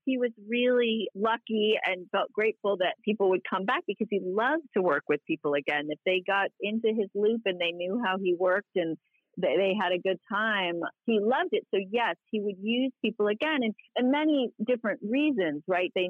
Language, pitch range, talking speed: English, 170-235 Hz, 205 wpm